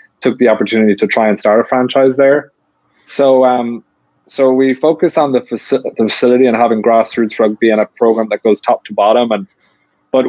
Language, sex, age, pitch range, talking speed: English, male, 20-39, 115-130 Hz, 200 wpm